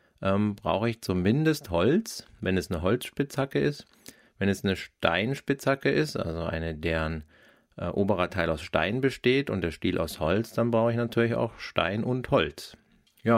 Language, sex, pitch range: German, male, 90-110 Hz